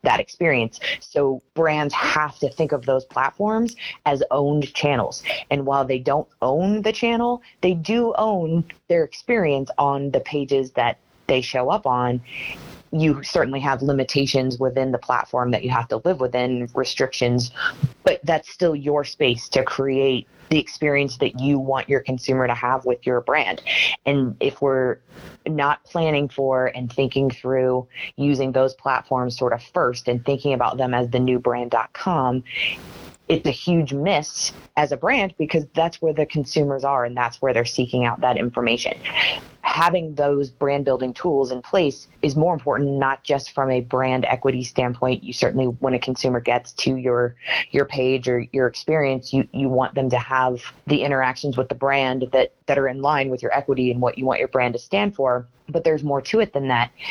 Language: English